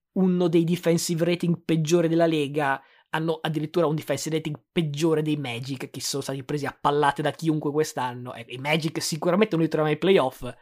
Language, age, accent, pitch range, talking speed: Italian, 20-39, native, 145-170 Hz, 180 wpm